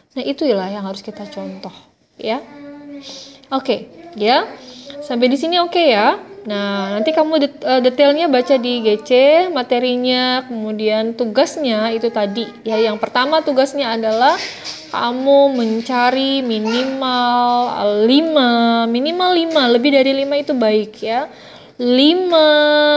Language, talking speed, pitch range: Indonesian, 120 wpm, 215-275 Hz